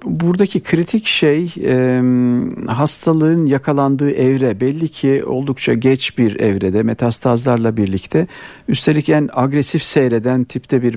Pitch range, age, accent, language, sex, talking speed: 115-150 Hz, 50-69, native, Turkish, male, 110 wpm